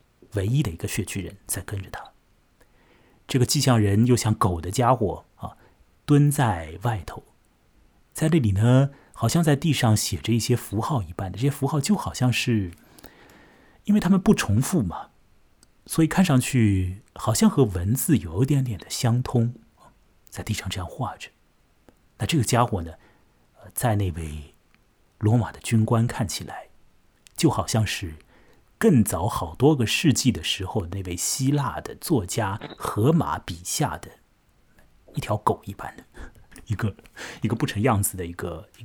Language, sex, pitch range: Chinese, male, 100-135 Hz